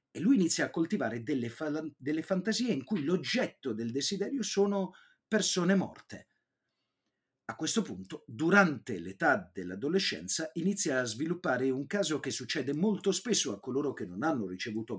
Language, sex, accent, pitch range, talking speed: Italian, male, native, 125-200 Hz, 150 wpm